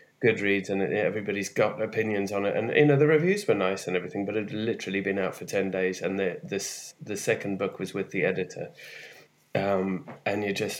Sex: male